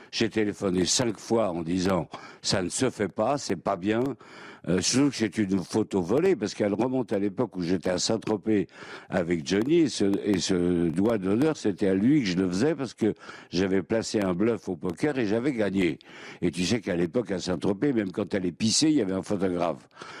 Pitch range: 90-115 Hz